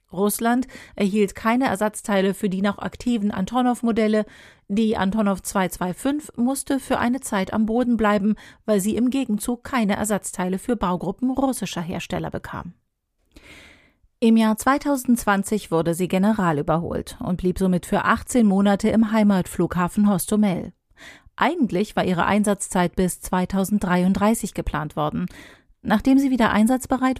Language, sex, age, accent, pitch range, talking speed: German, female, 40-59, German, 190-225 Hz, 125 wpm